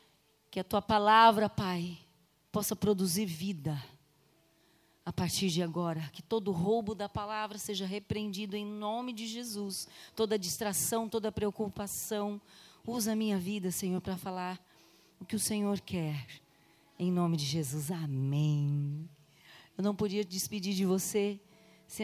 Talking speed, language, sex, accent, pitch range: 140 wpm, Portuguese, female, Brazilian, 175-240 Hz